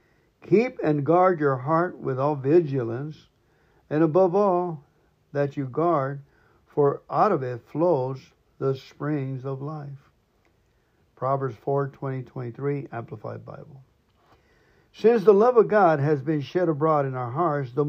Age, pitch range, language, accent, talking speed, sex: 60-79, 135-170 Hz, English, American, 140 wpm, male